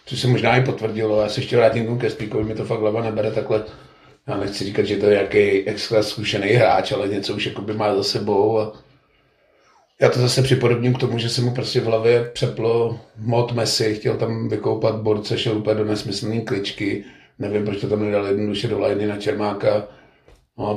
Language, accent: Czech, native